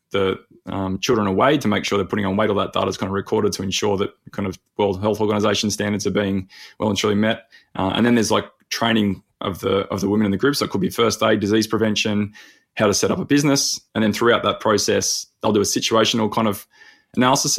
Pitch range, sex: 100-110 Hz, male